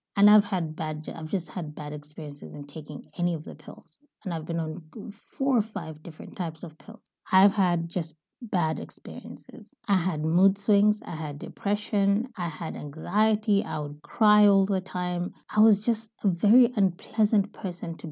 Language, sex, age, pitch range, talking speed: English, female, 20-39, 175-220 Hz, 180 wpm